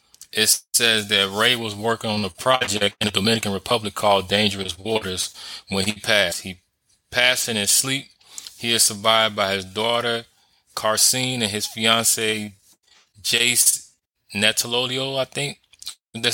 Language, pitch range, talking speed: English, 95-110 Hz, 145 wpm